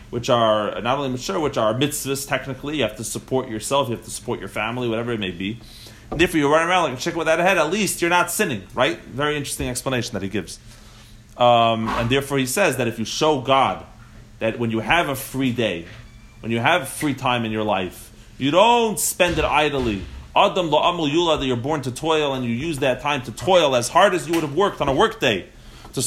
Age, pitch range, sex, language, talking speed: 30-49, 110-145 Hz, male, English, 230 wpm